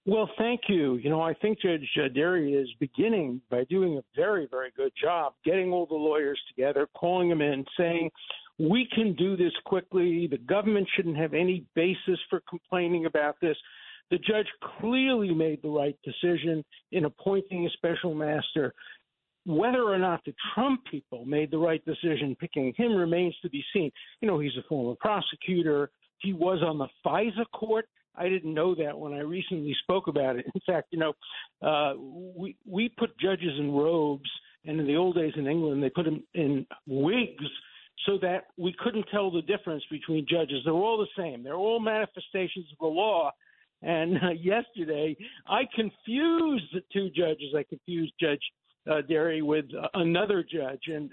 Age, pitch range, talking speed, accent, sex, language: 60-79, 150-190 Hz, 175 wpm, American, male, English